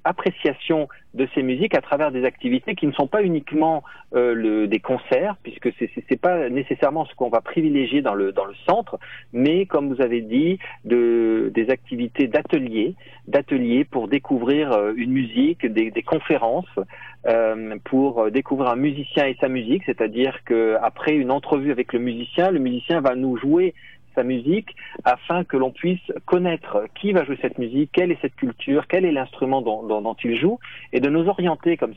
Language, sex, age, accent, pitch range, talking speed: French, male, 40-59, French, 115-150 Hz, 180 wpm